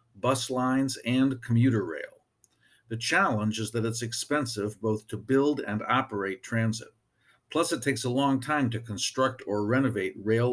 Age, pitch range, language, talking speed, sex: 50-69, 110-130 Hz, English, 160 wpm, male